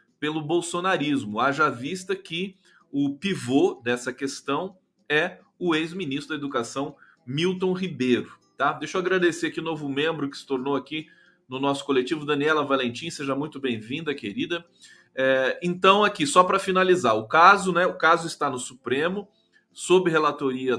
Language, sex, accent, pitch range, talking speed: Portuguese, male, Brazilian, 130-175 Hz, 155 wpm